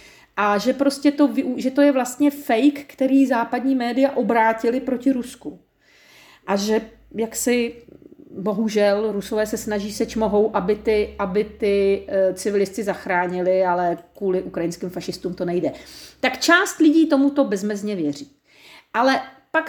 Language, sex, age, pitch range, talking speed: Czech, female, 40-59, 210-295 Hz, 135 wpm